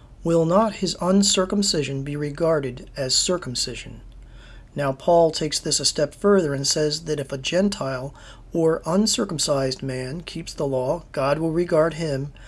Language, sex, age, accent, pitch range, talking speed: English, male, 40-59, American, 135-175 Hz, 150 wpm